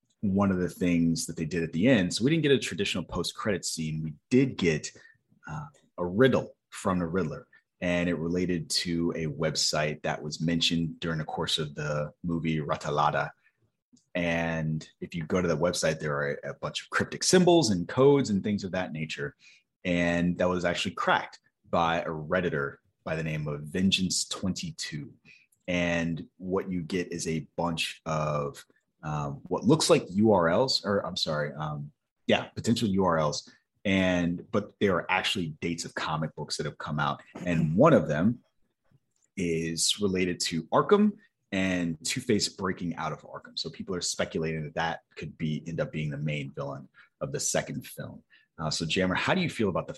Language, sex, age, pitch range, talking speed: English, male, 30-49, 75-90 Hz, 185 wpm